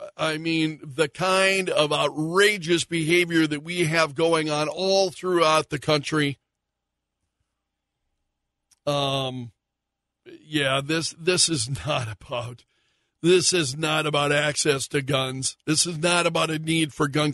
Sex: male